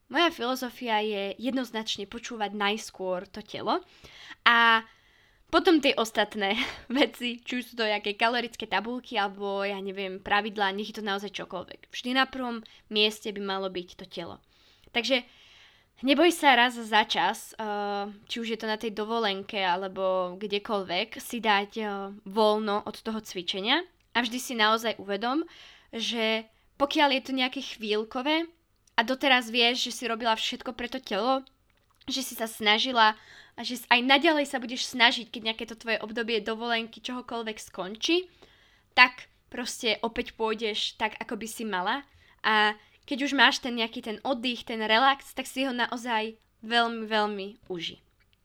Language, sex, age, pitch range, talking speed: Slovak, female, 20-39, 205-250 Hz, 155 wpm